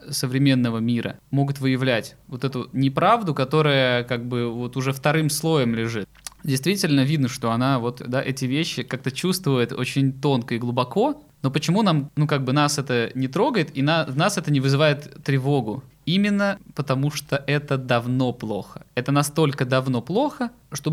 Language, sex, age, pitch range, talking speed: Russian, male, 20-39, 120-150 Hz, 165 wpm